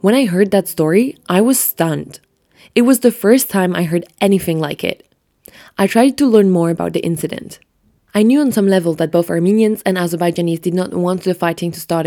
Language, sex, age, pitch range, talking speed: English, female, 20-39, 170-210 Hz, 215 wpm